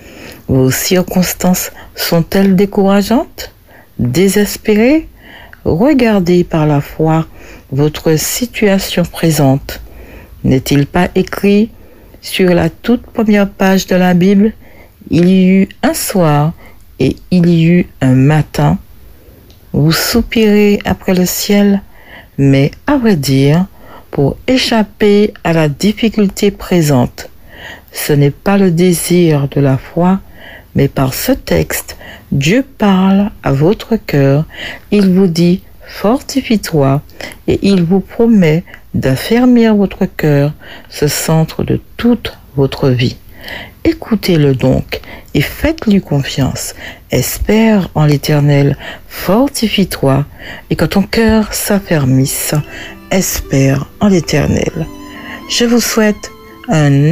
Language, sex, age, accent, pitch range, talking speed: French, female, 60-79, French, 145-210 Hz, 110 wpm